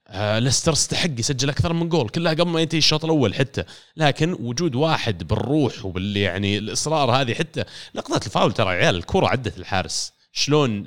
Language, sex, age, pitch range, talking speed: Arabic, male, 30-49, 100-130 Hz, 175 wpm